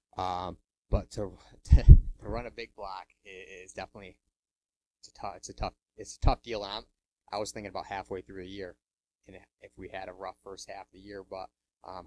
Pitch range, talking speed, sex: 95-105 Hz, 210 wpm, male